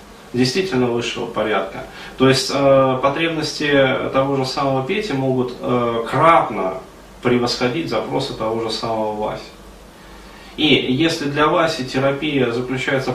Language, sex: Russian, male